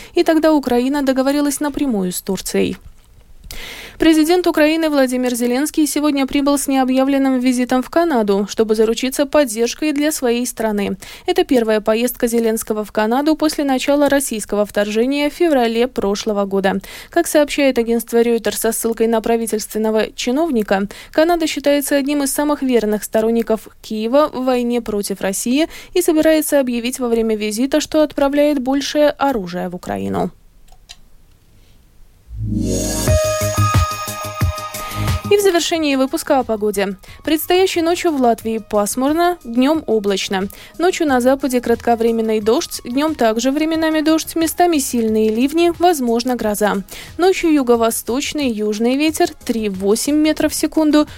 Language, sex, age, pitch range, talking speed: Russian, female, 20-39, 220-300 Hz, 125 wpm